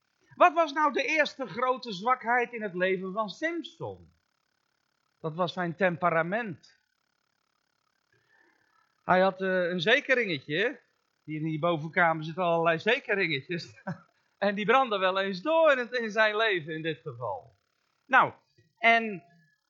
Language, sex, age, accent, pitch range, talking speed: Dutch, male, 40-59, Dutch, 175-260 Hz, 125 wpm